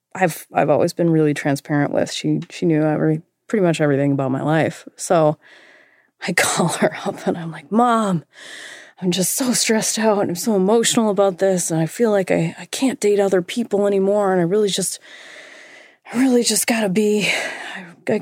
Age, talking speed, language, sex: 30-49, 190 wpm, English, female